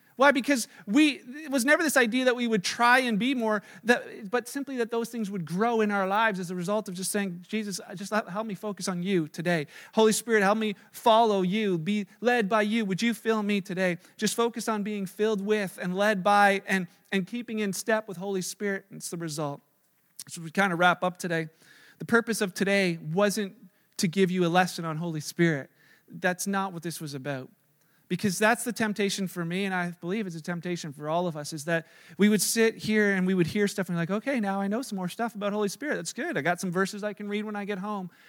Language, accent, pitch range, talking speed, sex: English, American, 175-215 Hz, 240 wpm, male